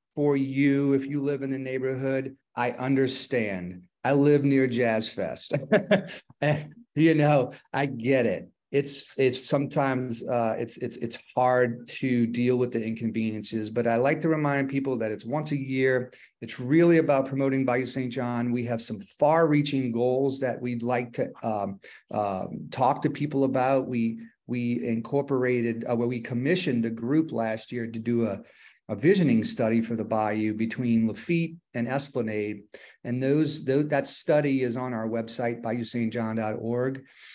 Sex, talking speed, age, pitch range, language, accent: male, 160 wpm, 40-59, 120-145 Hz, English, American